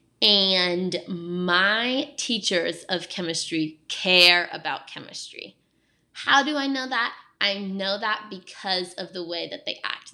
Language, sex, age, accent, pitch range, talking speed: English, female, 20-39, American, 175-210 Hz, 135 wpm